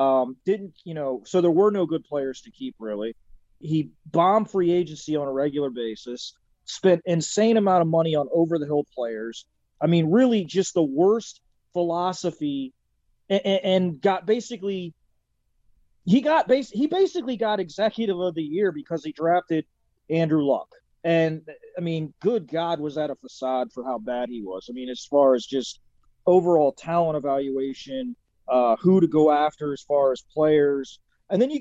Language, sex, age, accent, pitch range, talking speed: English, male, 30-49, American, 150-195 Hz, 170 wpm